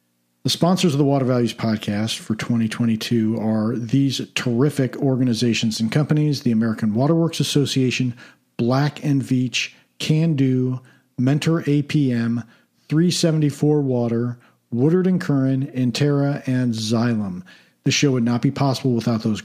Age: 50-69